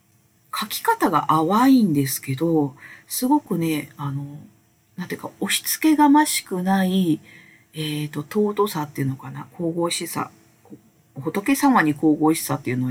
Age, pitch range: 40-59, 150-230 Hz